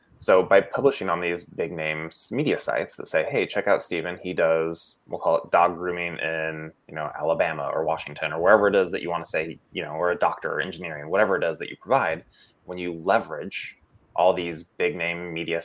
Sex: male